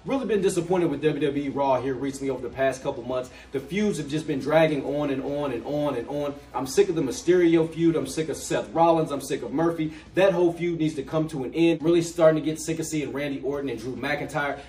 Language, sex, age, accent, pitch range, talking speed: English, male, 30-49, American, 140-165 Hz, 255 wpm